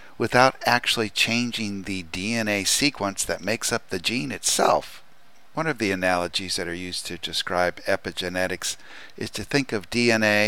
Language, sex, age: English, male, 60-79